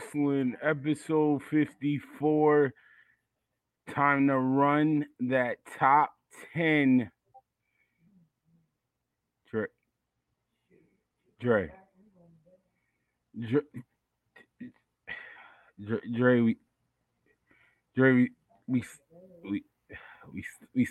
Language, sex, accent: English, male, American